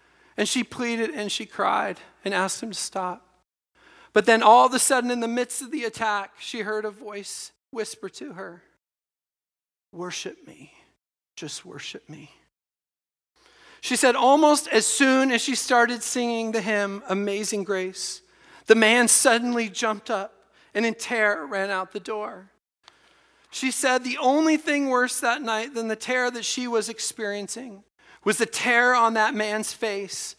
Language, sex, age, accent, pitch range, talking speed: English, male, 40-59, American, 200-245 Hz, 160 wpm